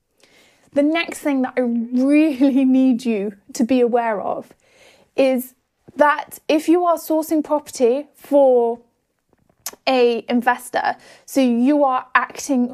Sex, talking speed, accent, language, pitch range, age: female, 120 wpm, British, English, 255-340 Hz, 30-49